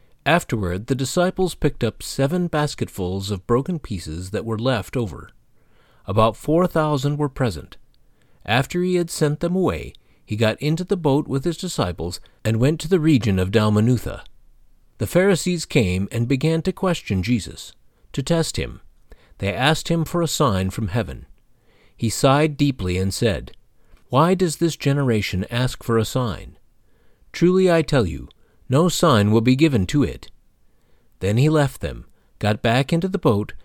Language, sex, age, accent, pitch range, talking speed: English, male, 50-69, American, 100-150 Hz, 165 wpm